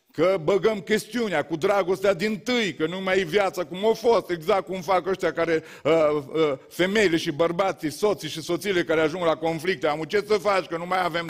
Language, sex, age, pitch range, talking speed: Romanian, male, 40-59, 165-210 Hz, 210 wpm